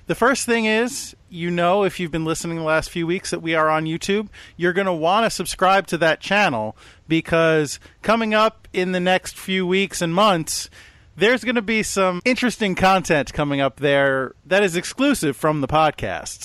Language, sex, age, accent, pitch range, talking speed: English, male, 40-59, American, 140-185 Hz, 195 wpm